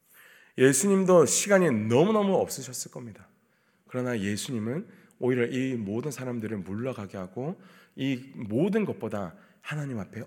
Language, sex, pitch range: Korean, male, 100-155 Hz